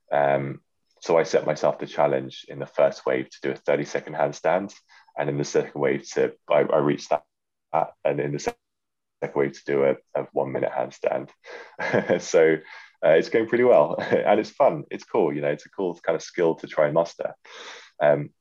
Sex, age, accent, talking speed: male, 20-39, British, 210 wpm